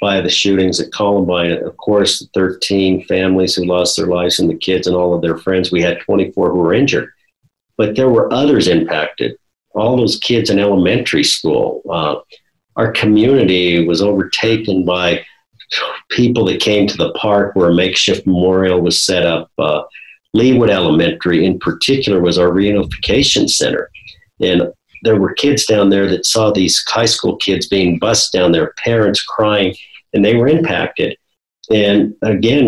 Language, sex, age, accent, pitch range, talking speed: English, male, 50-69, American, 90-110 Hz, 165 wpm